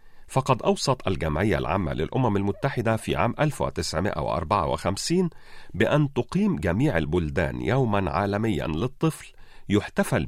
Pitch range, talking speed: 100-140 Hz, 100 wpm